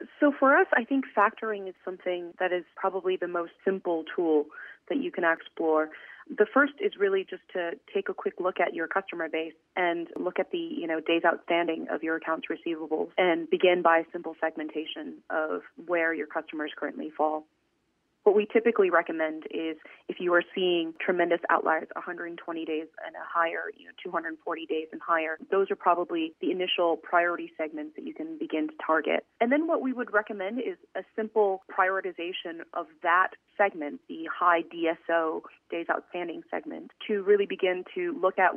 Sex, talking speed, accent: female, 180 wpm, American